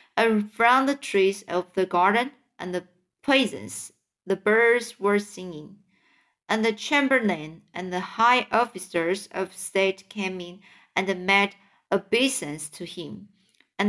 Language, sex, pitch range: Chinese, female, 190-230 Hz